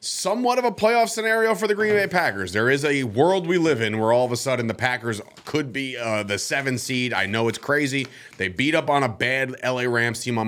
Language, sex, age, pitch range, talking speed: English, male, 30-49, 105-135 Hz, 250 wpm